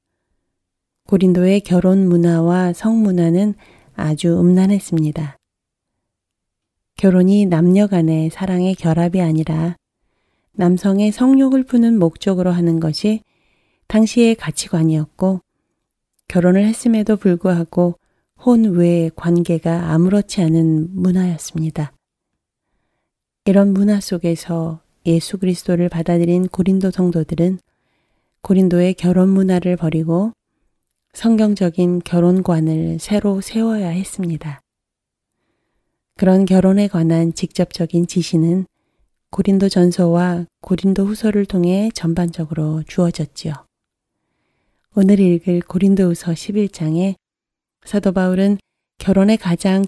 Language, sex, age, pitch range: Korean, female, 30-49, 165-195 Hz